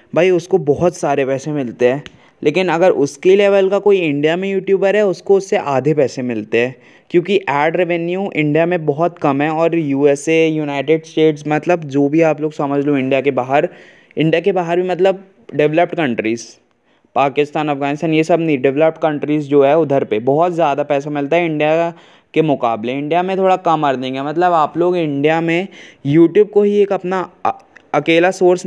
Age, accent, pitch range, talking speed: 20-39, native, 140-175 Hz, 180 wpm